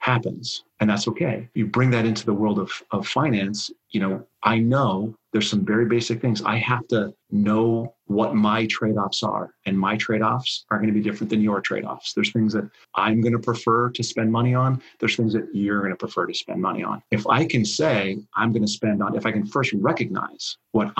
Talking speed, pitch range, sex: 230 wpm, 105-120 Hz, male